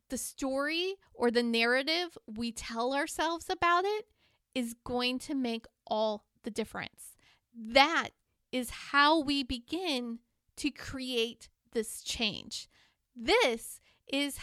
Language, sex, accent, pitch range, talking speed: English, female, American, 230-300 Hz, 115 wpm